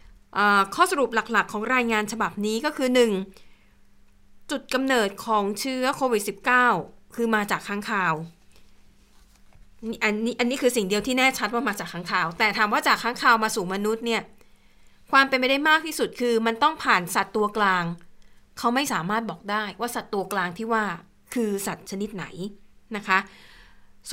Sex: female